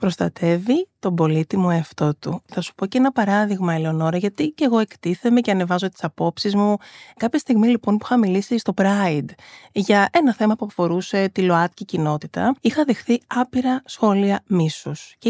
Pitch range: 180-250 Hz